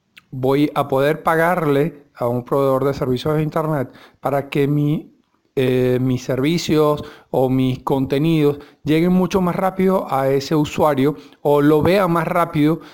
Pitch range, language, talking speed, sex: 140-175 Hz, Spanish, 145 wpm, male